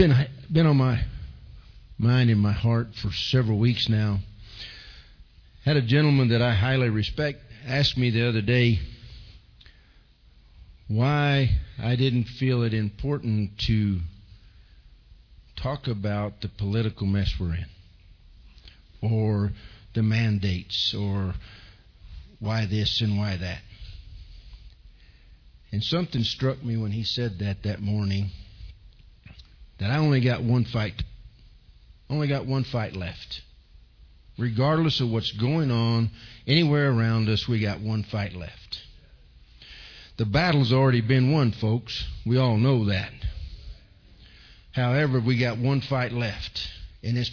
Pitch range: 95-120 Hz